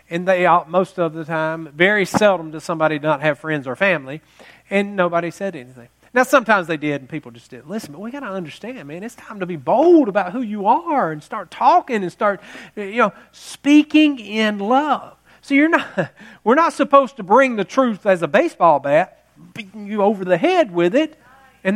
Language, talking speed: English, 210 wpm